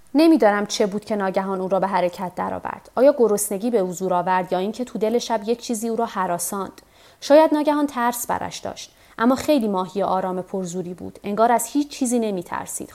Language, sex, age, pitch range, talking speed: Persian, female, 30-49, 190-245 Hz, 195 wpm